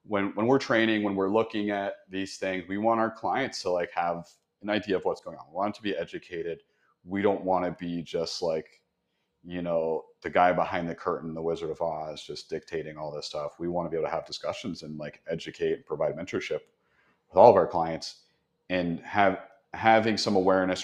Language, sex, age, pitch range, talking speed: English, male, 30-49, 80-100 Hz, 215 wpm